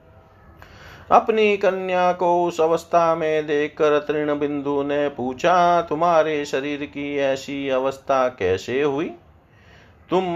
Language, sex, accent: Hindi, male, native